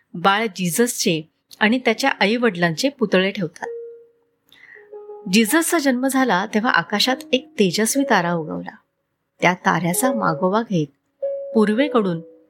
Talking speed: 105 wpm